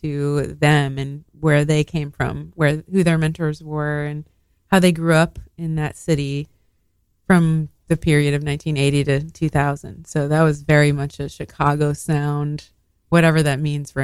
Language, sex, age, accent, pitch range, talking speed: English, female, 20-39, American, 145-160 Hz, 165 wpm